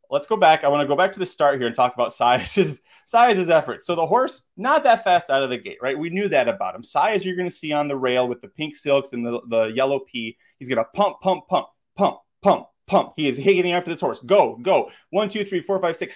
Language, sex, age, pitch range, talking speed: English, male, 30-49, 130-185 Hz, 275 wpm